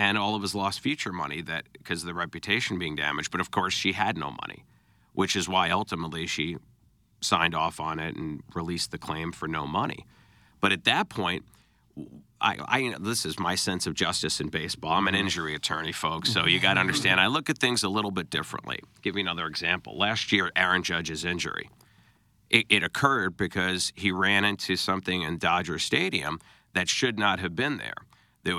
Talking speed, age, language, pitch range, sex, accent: 200 wpm, 50-69, English, 90-110 Hz, male, American